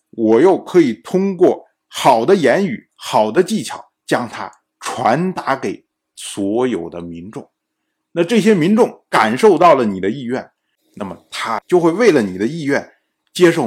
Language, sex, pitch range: Chinese, male, 145-225 Hz